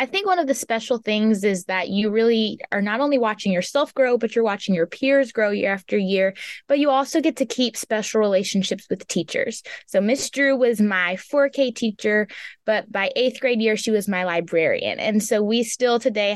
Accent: American